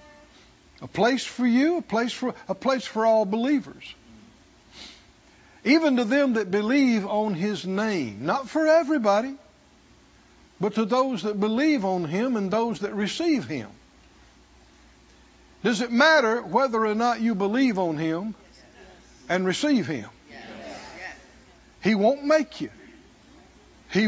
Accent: American